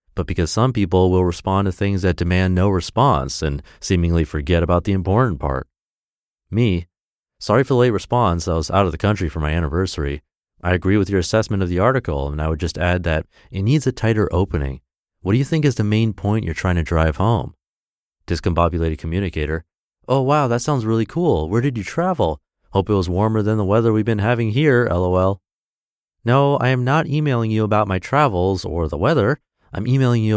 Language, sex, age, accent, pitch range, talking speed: English, male, 30-49, American, 85-110 Hz, 210 wpm